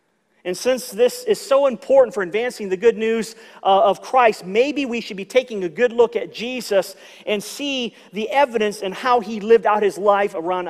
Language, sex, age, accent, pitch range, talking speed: English, male, 40-59, American, 225-295 Hz, 195 wpm